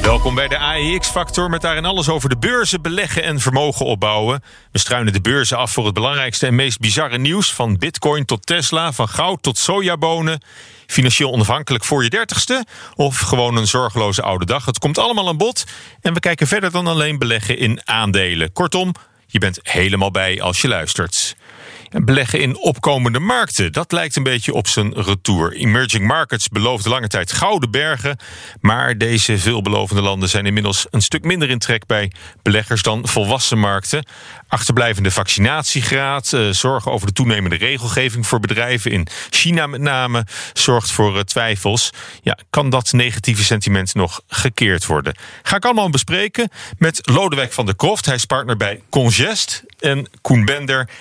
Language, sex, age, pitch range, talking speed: Dutch, male, 40-59, 105-145 Hz, 170 wpm